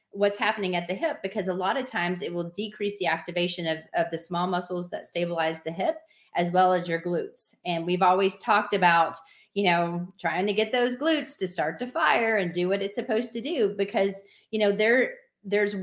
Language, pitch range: English, 175-210 Hz